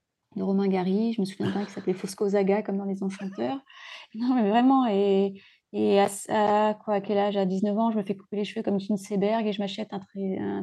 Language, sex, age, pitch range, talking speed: French, female, 30-49, 195-230 Hz, 225 wpm